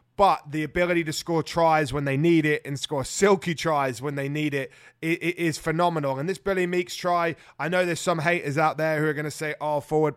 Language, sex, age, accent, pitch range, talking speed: English, male, 20-39, British, 150-170 Hz, 240 wpm